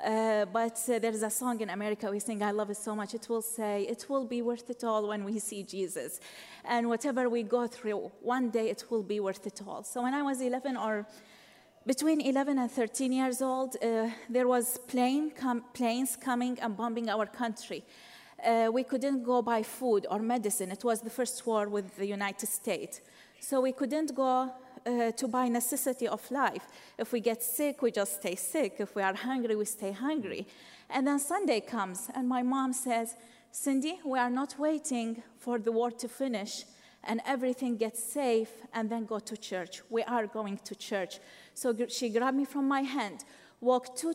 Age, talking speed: 30-49, 195 wpm